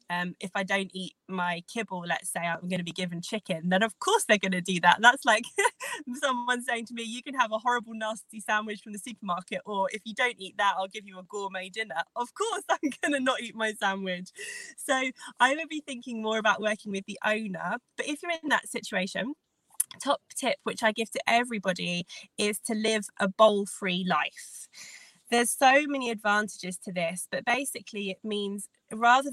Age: 20-39